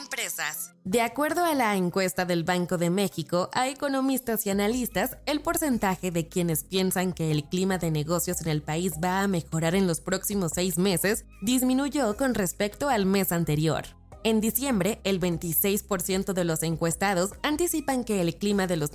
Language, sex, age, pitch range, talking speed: Spanish, female, 20-39, 175-245 Hz, 170 wpm